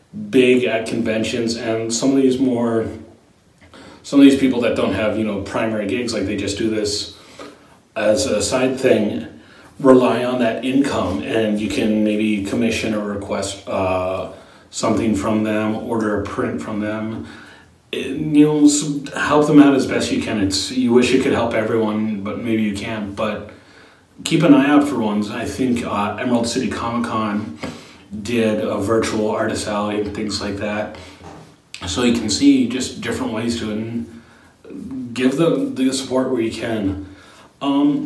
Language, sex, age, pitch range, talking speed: English, male, 30-49, 105-120 Hz, 170 wpm